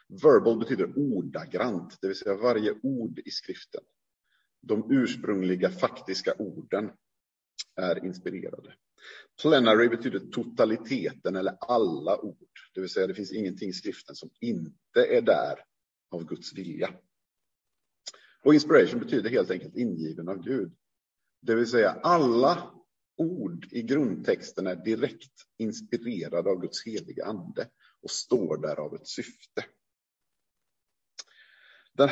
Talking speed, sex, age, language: 125 wpm, male, 50-69, Swedish